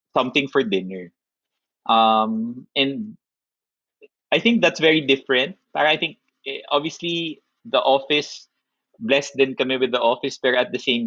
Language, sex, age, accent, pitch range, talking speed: Filipino, male, 20-39, native, 110-170 Hz, 140 wpm